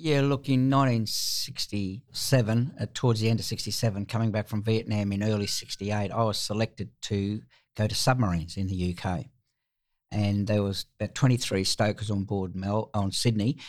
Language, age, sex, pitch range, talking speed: English, 60-79, male, 95-115 Hz, 165 wpm